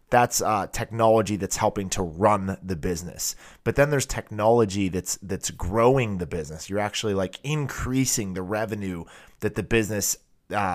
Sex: male